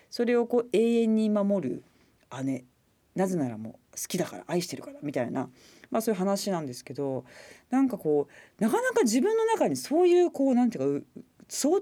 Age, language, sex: 40-59, Japanese, female